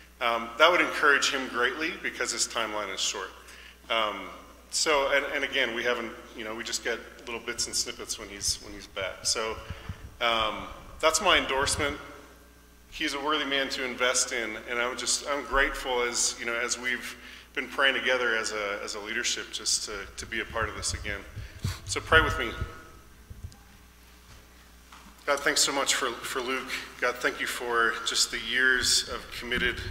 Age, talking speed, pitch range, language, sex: 30-49, 185 wpm, 100-125 Hz, English, male